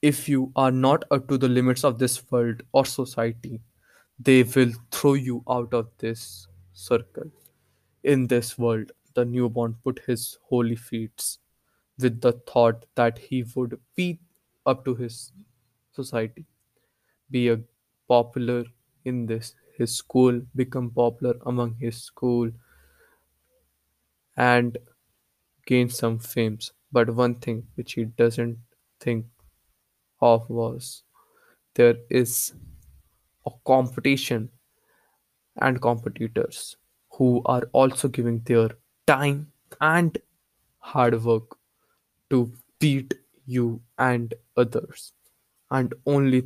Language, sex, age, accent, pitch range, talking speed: English, male, 20-39, Indian, 115-130 Hz, 115 wpm